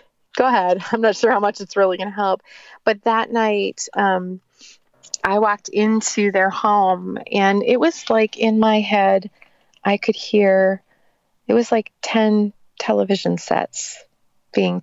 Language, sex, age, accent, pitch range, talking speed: English, female, 30-49, American, 180-215 Hz, 155 wpm